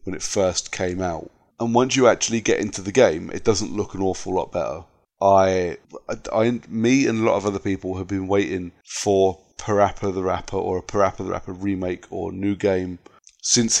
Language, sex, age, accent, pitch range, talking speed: English, male, 30-49, British, 90-105 Hz, 190 wpm